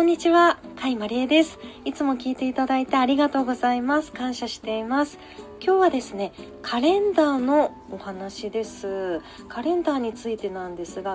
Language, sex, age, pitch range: Japanese, female, 40-59, 200-315 Hz